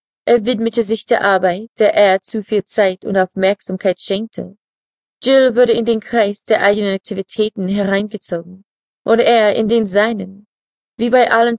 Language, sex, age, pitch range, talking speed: German, female, 20-39, 190-230 Hz, 155 wpm